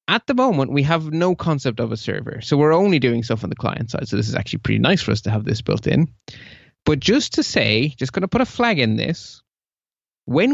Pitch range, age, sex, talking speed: 120-170 Hz, 30-49, male, 255 wpm